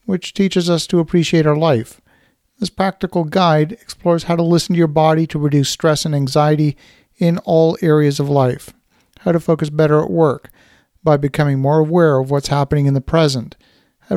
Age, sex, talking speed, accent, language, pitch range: 50-69, male, 185 wpm, American, English, 150-180 Hz